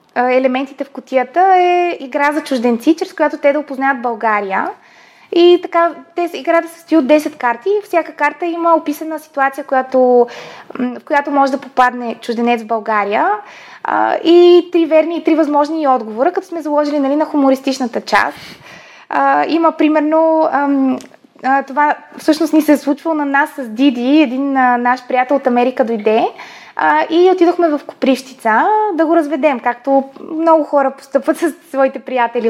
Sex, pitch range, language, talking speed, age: female, 255-330 Hz, Bulgarian, 155 wpm, 20-39